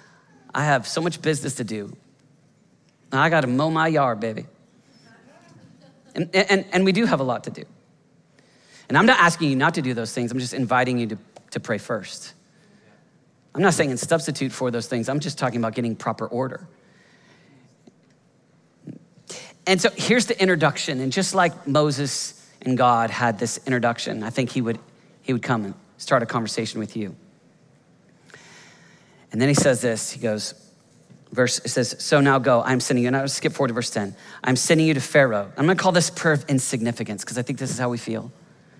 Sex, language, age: male, English, 40-59